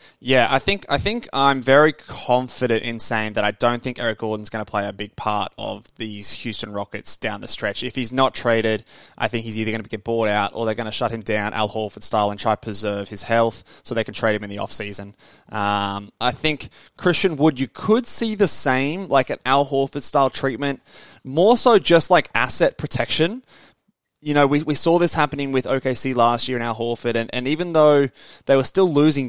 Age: 20-39